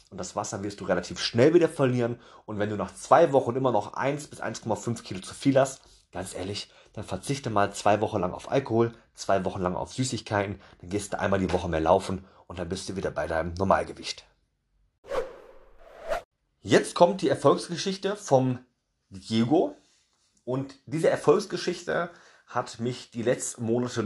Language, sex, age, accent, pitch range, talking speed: German, male, 30-49, German, 105-140 Hz, 170 wpm